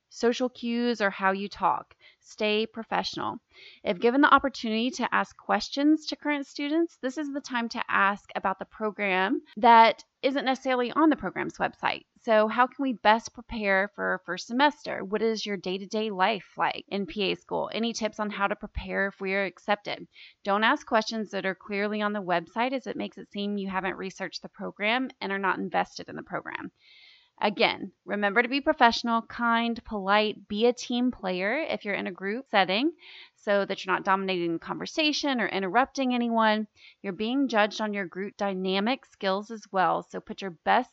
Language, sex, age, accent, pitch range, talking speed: English, female, 30-49, American, 200-250 Hz, 190 wpm